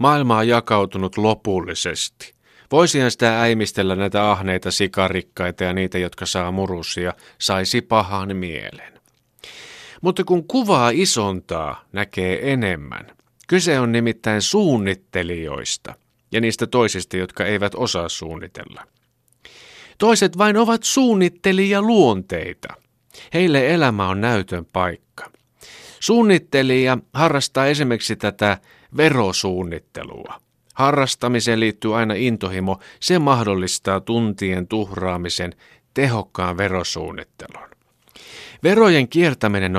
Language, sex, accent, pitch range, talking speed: Finnish, male, native, 95-130 Hz, 90 wpm